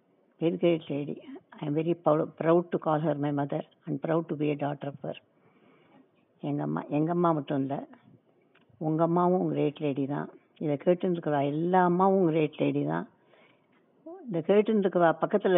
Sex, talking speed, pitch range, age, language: female, 160 wpm, 150-175 Hz, 60-79, Tamil